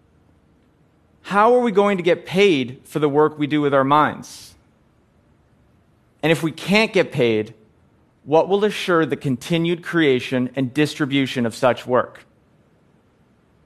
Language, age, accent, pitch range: English, 30-49, American, 140-185 Hz